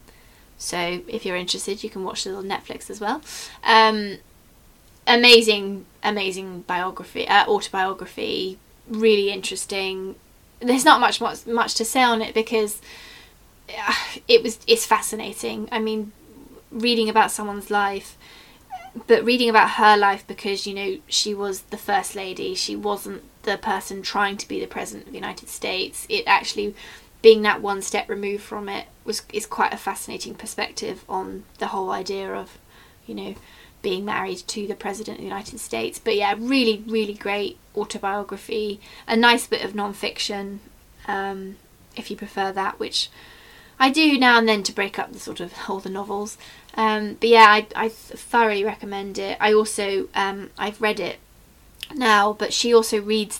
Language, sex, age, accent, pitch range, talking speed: English, female, 20-39, British, 200-225 Hz, 165 wpm